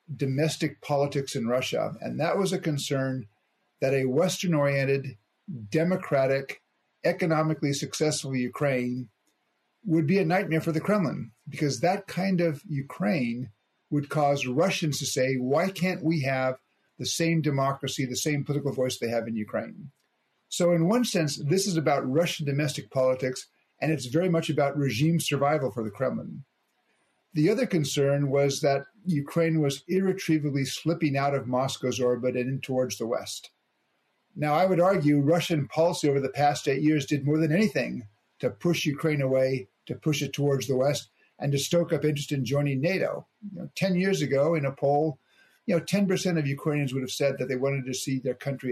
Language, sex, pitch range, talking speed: English, male, 135-165 Hz, 175 wpm